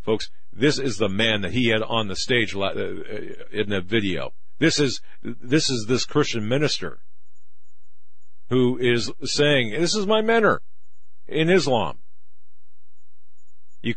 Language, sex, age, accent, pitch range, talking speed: English, male, 50-69, American, 90-115 Hz, 135 wpm